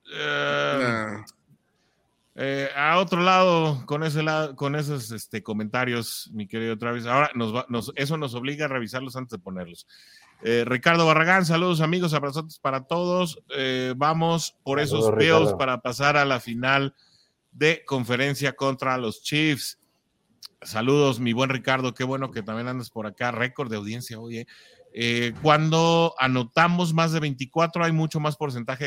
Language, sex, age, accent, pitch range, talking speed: English, male, 30-49, Mexican, 125-160 Hz, 135 wpm